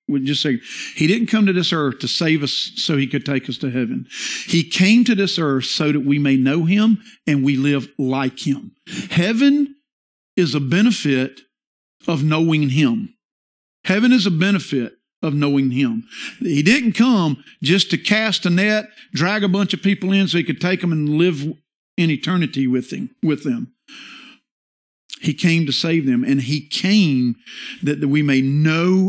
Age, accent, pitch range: 50-69, American, 140-195 Hz